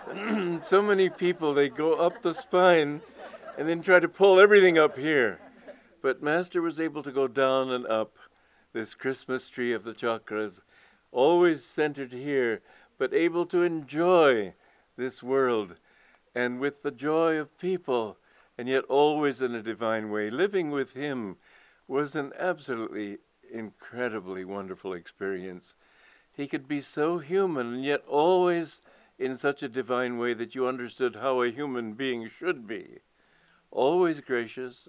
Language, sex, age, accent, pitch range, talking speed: English, male, 60-79, American, 115-165 Hz, 150 wpm